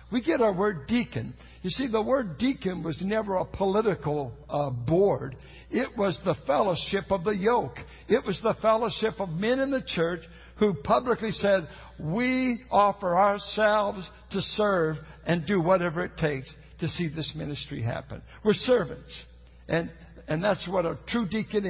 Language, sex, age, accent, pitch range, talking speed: English, male, 60-79, American, 155-220 Hz, 165 wpm